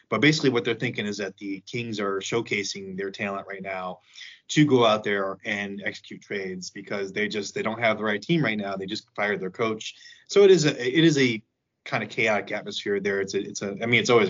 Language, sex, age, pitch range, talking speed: English, male, 20-39, 100-140 Hz, 240 wpm